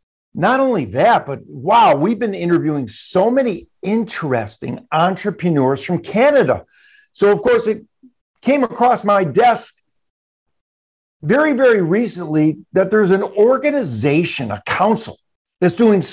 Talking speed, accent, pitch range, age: 125 wpm, American, 165-210 Hz, 50-69